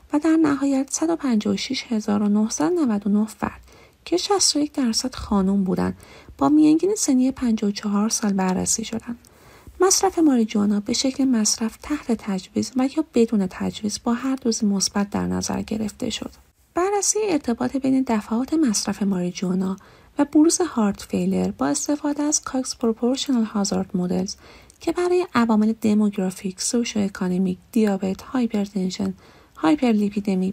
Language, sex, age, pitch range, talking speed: Persian, female, 30-49, 200-270 Hz, 120 wpm